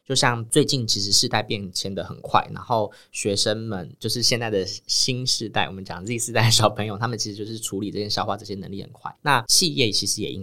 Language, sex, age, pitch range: Chinese, male, 20-39, 95-115 Hz